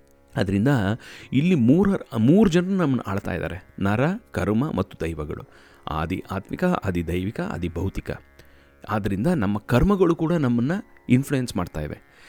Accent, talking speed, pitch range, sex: native, 120 wpm, 95-155 Hz, male